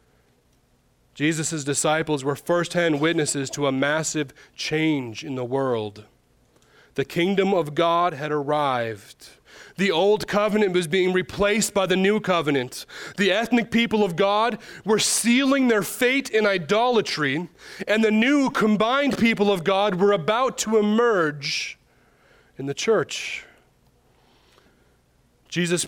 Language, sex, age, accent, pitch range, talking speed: English, male, 30-49, American, 145-205 Hz, 125 wpm